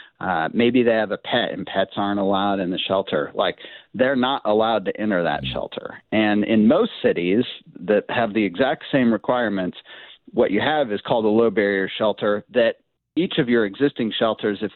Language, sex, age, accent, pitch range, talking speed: English, male, 40-59, American, 100-120 Hz, 190 wpm